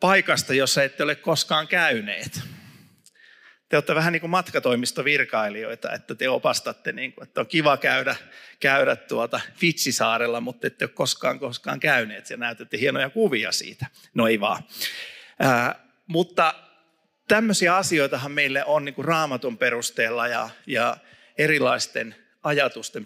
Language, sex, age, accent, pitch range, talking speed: Finnish, male, 50-69, native, 135-185 Hz, 135 wpm